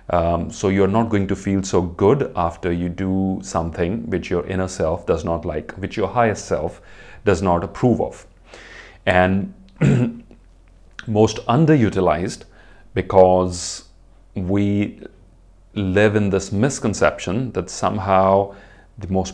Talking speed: 125 wpm